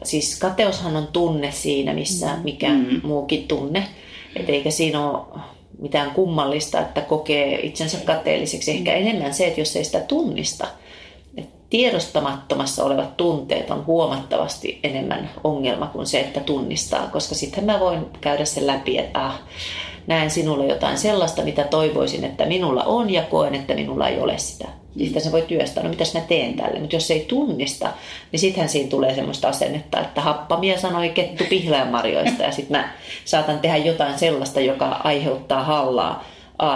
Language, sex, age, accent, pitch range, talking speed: Finnish, female, 30-49, native, 145-170 Hz, 160 wpm